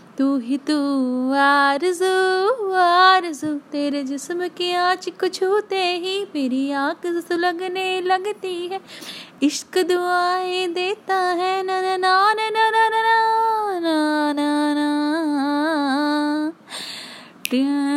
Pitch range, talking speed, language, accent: 255-345 Hz, 105 wpm, Hindi, native